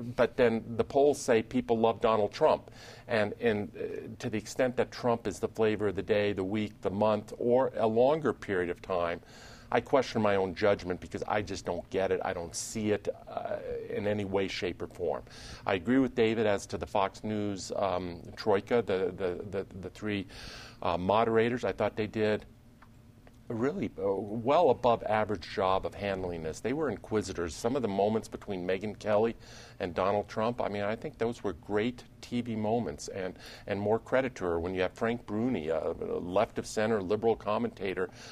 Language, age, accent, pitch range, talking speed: English, 50-69, American, 95-115 Hz, 195 wpm